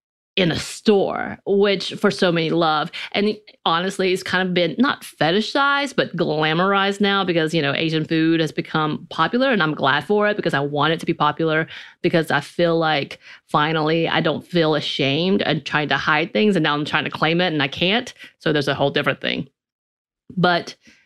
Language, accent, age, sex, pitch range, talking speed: English, American, 30-49, female, 150-180 Hz, 200 wpm